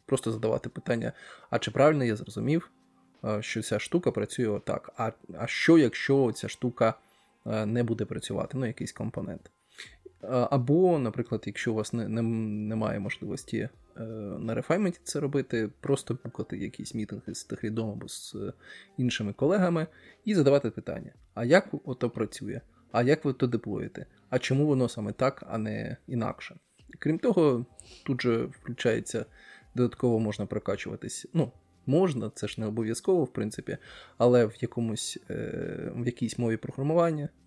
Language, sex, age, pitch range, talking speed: Ukrainian, male, 20-39, 110-135 Hz, 145 wpm